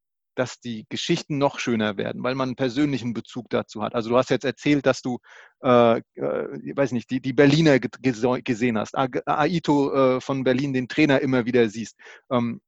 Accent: German